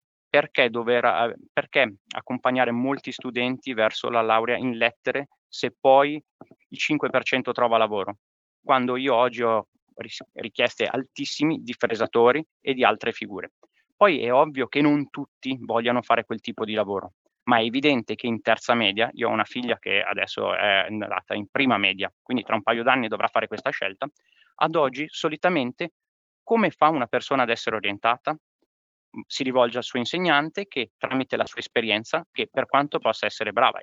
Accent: native